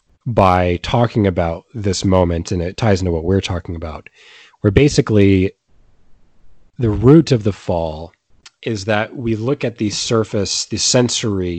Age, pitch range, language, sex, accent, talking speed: 30-49, 90-110 Hz, English, male, American, 150 wpm